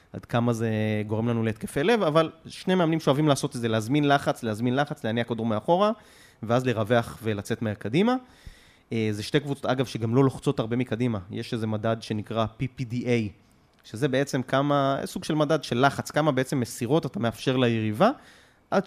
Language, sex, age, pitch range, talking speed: Hebrew, male, 20-39, 115-150 Hz, 175 wpm